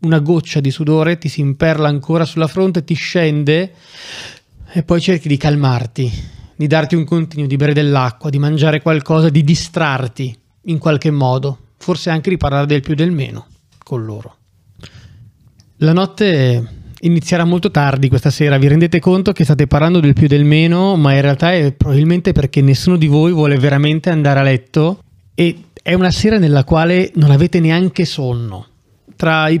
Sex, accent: male, native